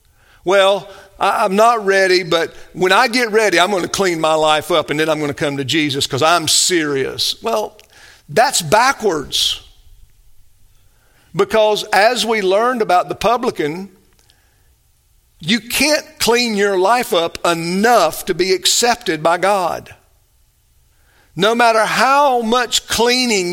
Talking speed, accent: 140 wpm, American